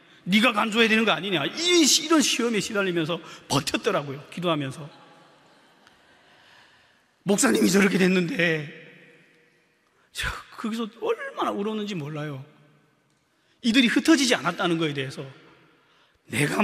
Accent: native